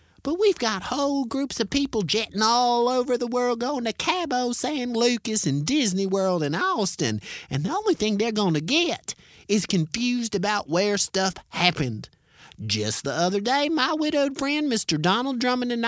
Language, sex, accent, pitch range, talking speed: English, male, American, 200-270 Hz, 180 wpm